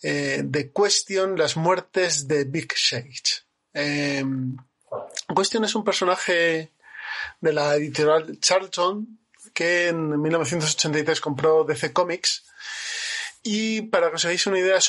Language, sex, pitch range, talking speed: Spanish, male, 150-190 Hz, 125 wpm